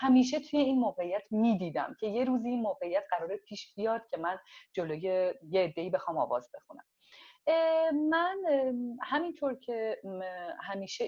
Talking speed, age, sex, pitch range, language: 135 wpm, 40-59, female, 195-285 Hz, Persian